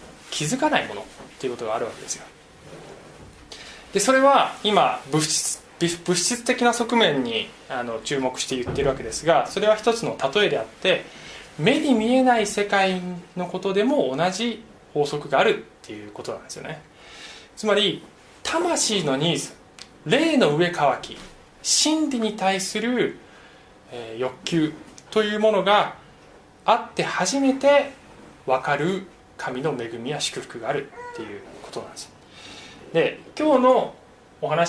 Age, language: 20-39, Japanese